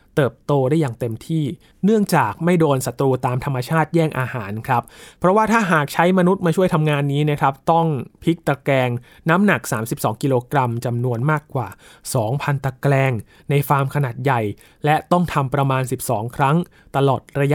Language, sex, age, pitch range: Thai, male, 20-39, 125-155 Hz